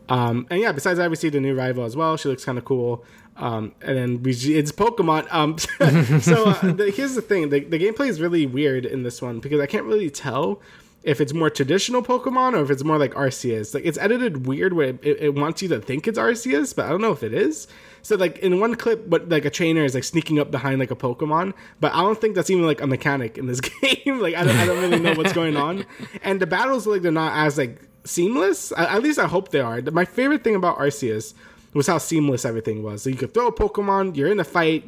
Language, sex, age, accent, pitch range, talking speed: English, male, 20-39, American, 135-190 Hz, 260 wpm